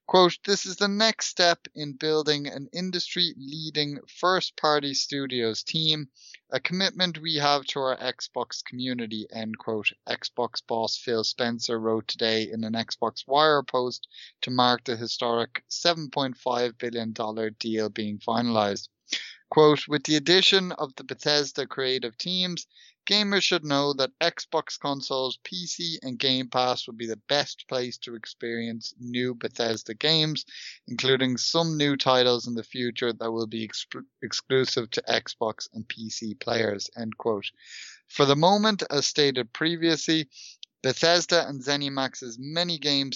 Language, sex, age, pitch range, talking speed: English, male, 30-49, 115-155 Hz, 140 wpm